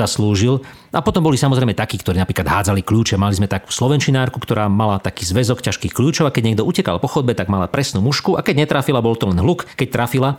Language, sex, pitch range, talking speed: Slovak, male, 110-135 Hz, 225 wpm